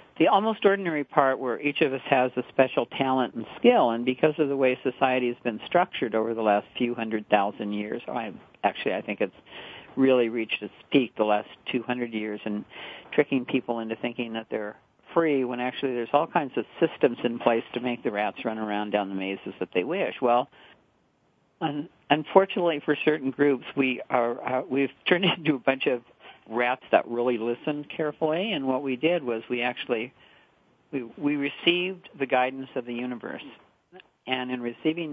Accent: American